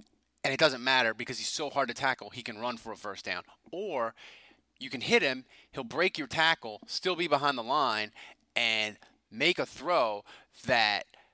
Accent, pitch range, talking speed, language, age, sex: American, 130-200 Hz, 190 wpm, English, 30-49, male